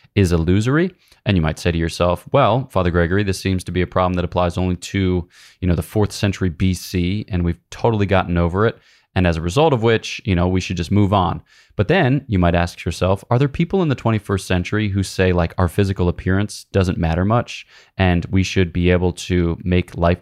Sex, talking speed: male, 225 wpm